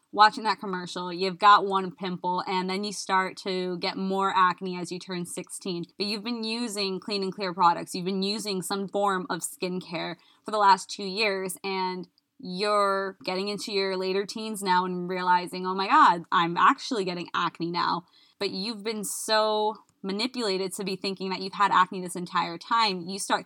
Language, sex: English, female